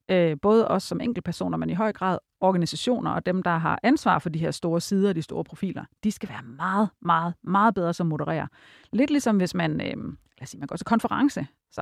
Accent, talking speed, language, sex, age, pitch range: native, 210 wpm, Danish, female, 40-59, 170-230 Hz